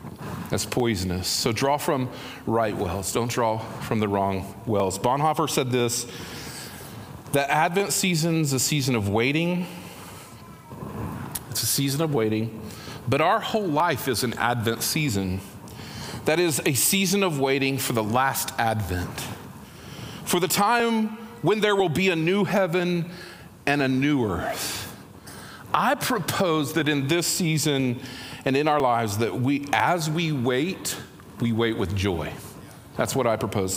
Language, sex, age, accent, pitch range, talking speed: English, male, 40-59, American, 115-160 Hz, 145 wpm